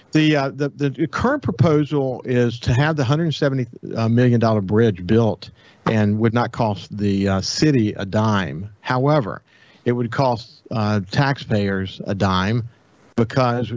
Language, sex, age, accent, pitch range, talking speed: English, male, 50-69, American, 110-140 Hz, 140 wpm